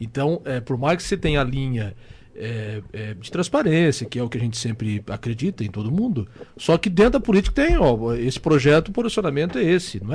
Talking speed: 225 wpm